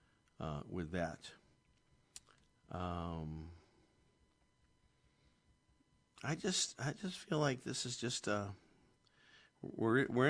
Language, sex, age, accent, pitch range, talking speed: English, male, 50-69, American, 90-110 Hz, 95 wpm